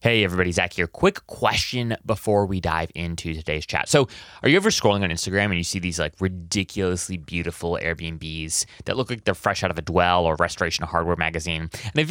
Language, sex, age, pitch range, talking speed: English, male, 30-49, 90-130 Hz, 210 wpm